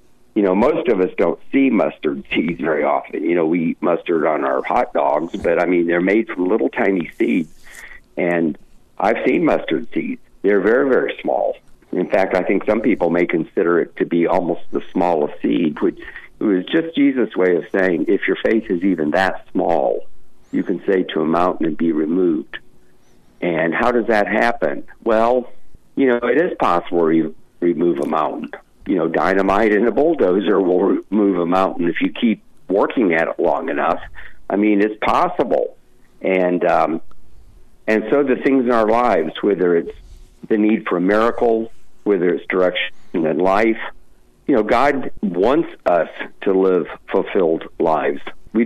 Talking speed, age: 180 wpm, 50-69